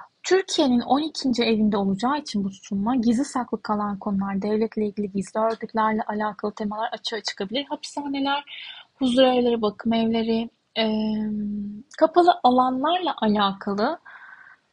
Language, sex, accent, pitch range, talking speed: Turkish, female, native, 215-270 Hz, 110 wpm